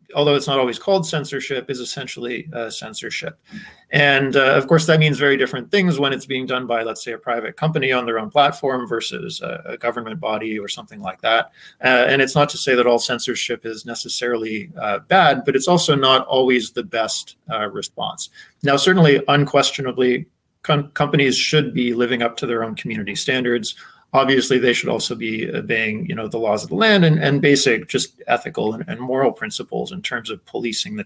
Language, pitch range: English, 125-150 Hz